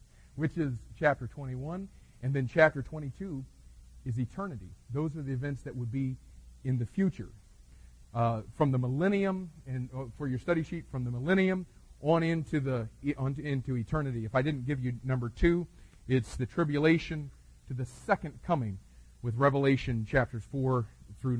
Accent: American